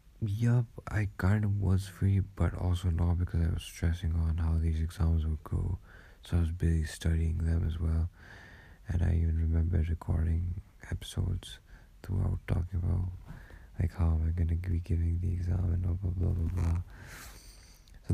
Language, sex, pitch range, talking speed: English, male, 85-95 Hz, 175 wpm